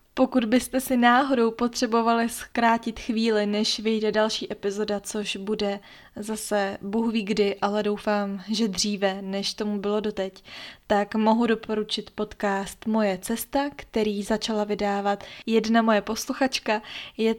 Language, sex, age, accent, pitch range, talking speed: Czech, female, 20-39, native, 205-230 Hz, 130 wpm